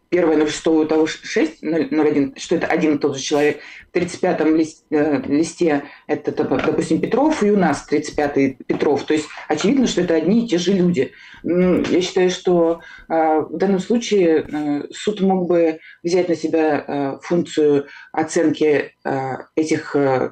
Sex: female